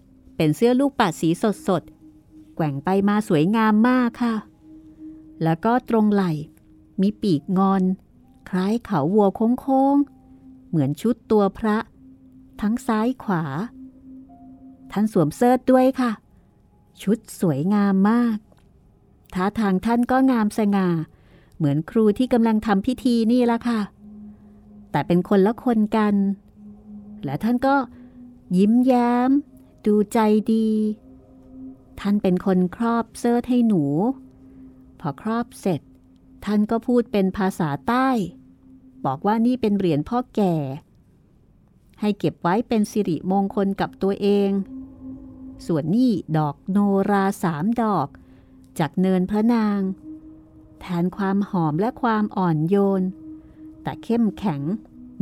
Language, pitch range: Thai, 165-235 Hz